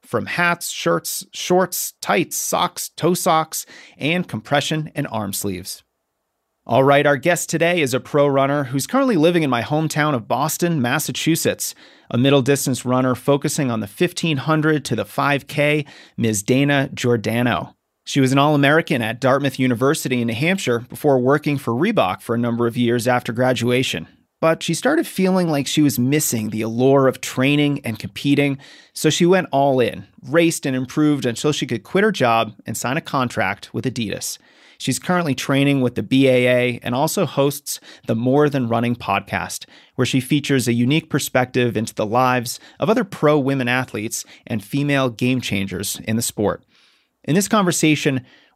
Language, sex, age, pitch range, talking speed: English, male, 30-49, 120-150 Hz, 170 wpm